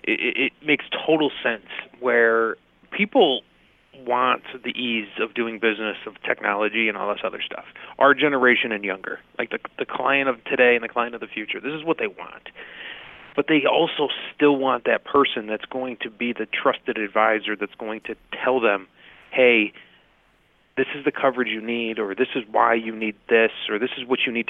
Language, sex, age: English, male, 30-49